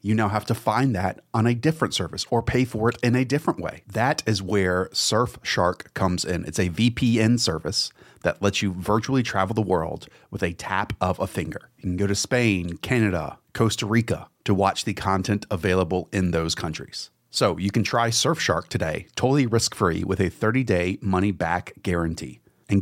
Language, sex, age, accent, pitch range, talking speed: English, male, 30-49, American, 95-125 Hz, 185 wpm